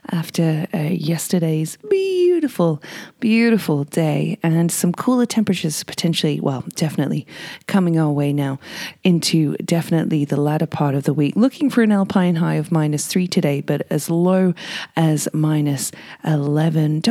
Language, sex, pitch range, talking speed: English, female, 155-200 Hz, 140 wpm